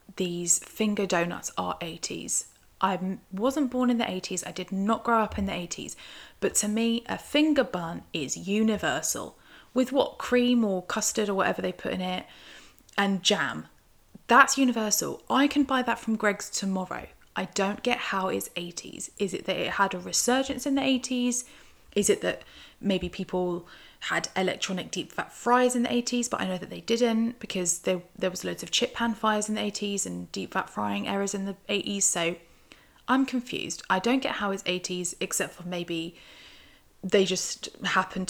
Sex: female